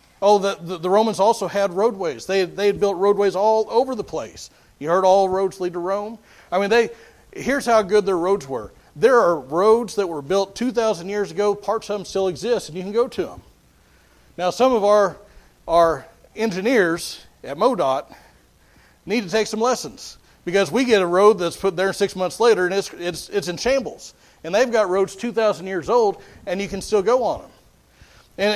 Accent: American